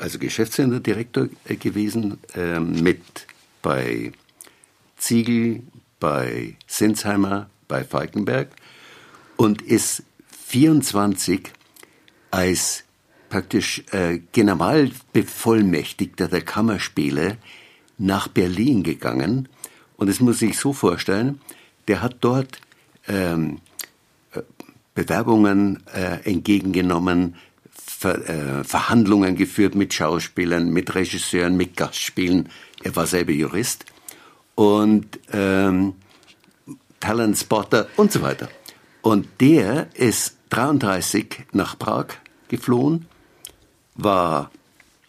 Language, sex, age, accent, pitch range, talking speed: German, male, 60-79, German, 85-115 Hz, 85 wpm